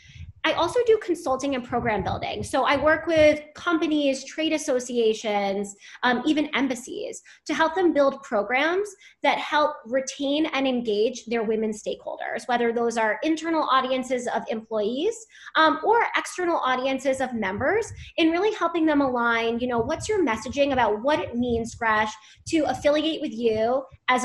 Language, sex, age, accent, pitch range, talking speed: English, female, 20-39, American, 235-310 Hz, 155 wpm